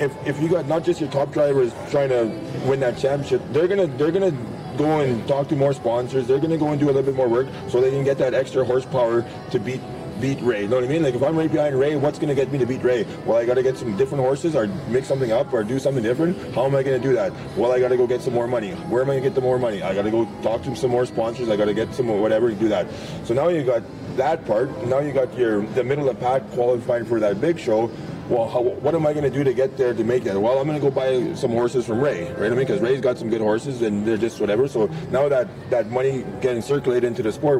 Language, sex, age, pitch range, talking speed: English, male, 20-39, 120-145 Hz, 290 wpm